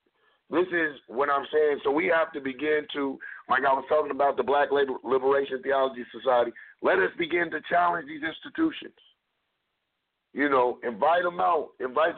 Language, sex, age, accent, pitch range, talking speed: English, male, 50-69, American, 140-200 Hz, 170 wpm